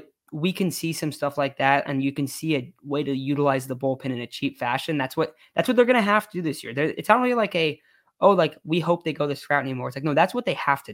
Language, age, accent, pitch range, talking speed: English, 20-39, American, 135-170 Hz, 315 wpm